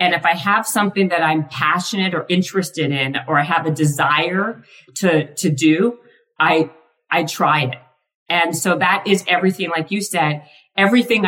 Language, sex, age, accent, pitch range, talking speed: English, female, 40-59, American, 155-195 Hz, 170 wpm